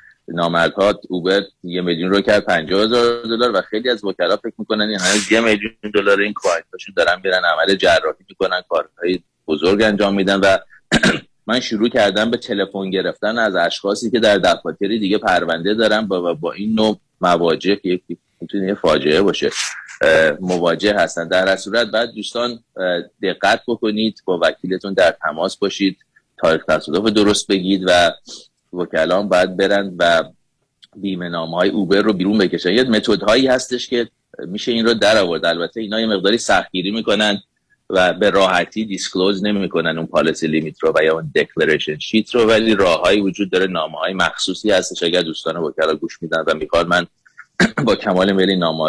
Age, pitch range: 30-49, 90-110 Hz